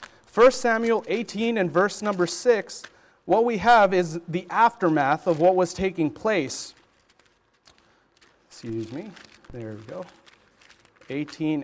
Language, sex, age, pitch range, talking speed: English, male, 40-59, 150-220 Hz, 125 wpm